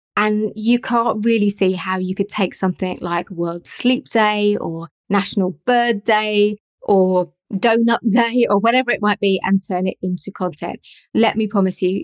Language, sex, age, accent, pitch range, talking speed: English, female, 20-39, British, 185-220 Hz, 175 wpm